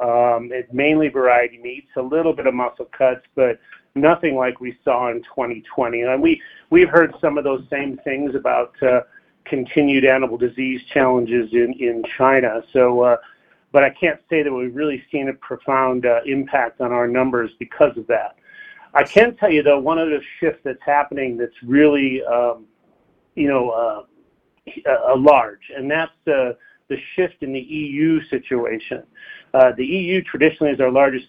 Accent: American